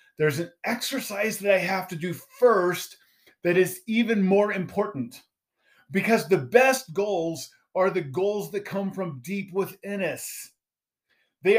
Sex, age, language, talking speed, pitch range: male, 30-49, English, 145 wpm, 155-215 Hz